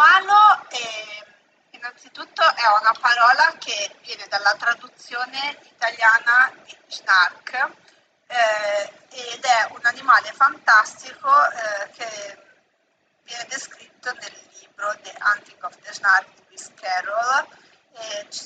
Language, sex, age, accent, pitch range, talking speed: Italian, female, 30-49, native, 225-295 Hz, 105 wpm